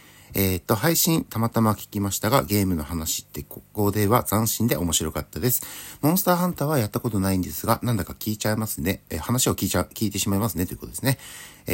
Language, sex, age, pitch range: Japanese, male, 60-79, 90-130 Hz